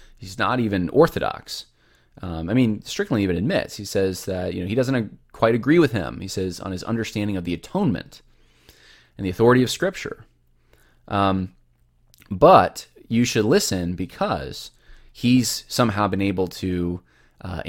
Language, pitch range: English, 90-120 Hz